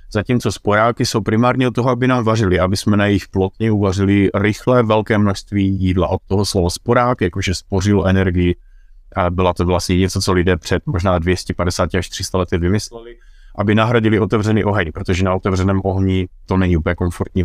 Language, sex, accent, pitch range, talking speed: Czech, male, native, 90-100 Hz, 175 wpm